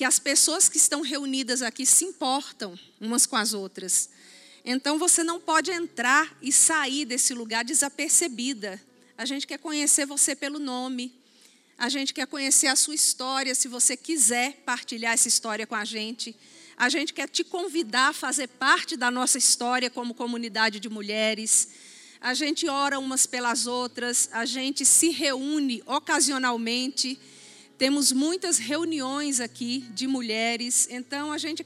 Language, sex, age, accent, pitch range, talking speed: Portuguese, female, 50-69, Brazilian, 240-300 Hz, 155 wpm